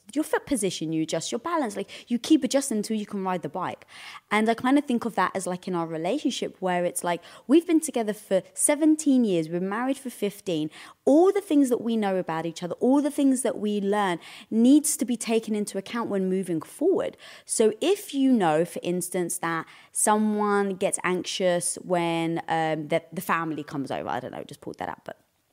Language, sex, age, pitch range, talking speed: English, female, 20-39, 170-255 Hz, 215 wpm